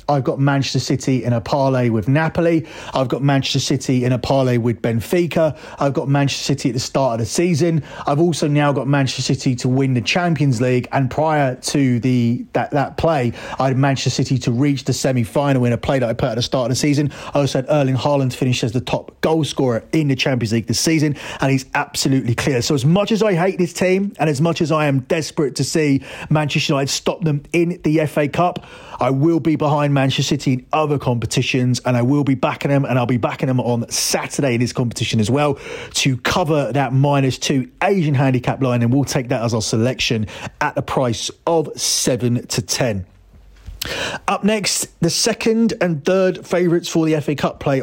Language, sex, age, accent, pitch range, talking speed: English, male, 30-49, British, 125-155 Hz, 220 wpm